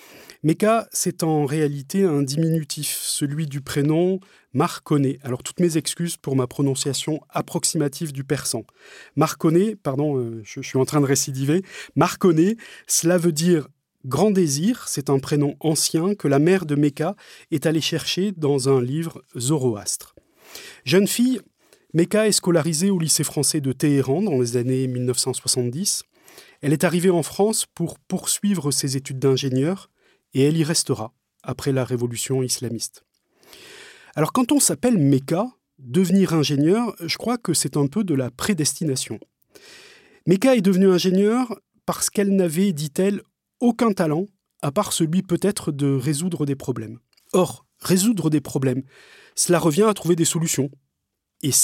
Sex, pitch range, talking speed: male, 135-180 Hz, 150 wpm